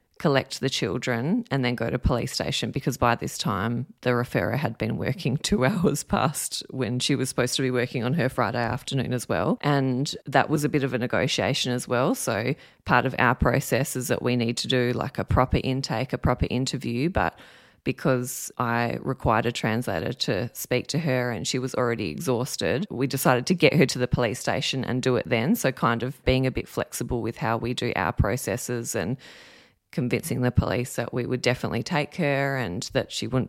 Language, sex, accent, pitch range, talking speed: English, female, Australian, 125-140 Hz, 210 wpm